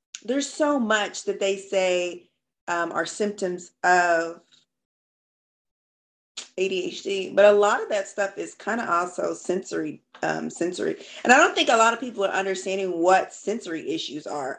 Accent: American